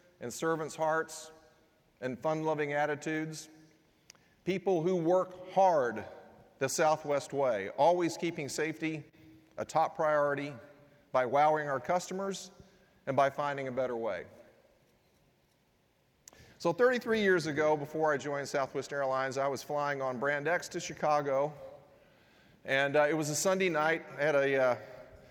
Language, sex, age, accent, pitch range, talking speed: English, male, 40-59, American, 135-170 Hz, 135 wpm